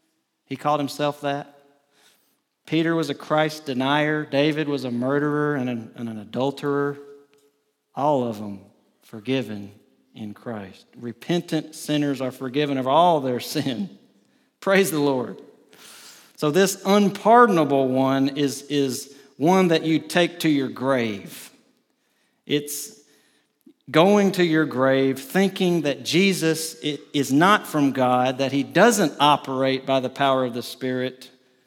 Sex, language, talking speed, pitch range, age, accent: male, English, 130 wpm, 130-160 Hz, 40-59, American